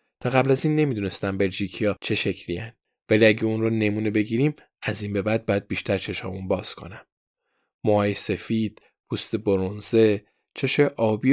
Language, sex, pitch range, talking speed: Persian, male, 100-120 Hz, 160 wpm